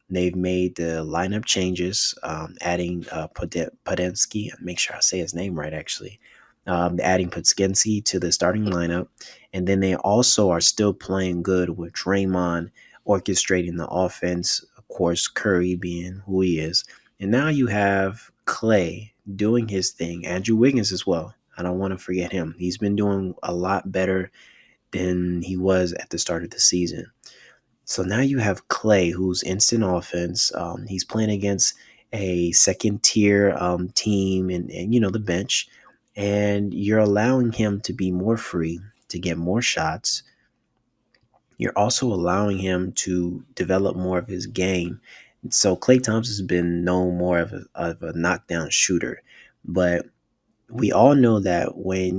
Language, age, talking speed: English, 20-39, 160 wpm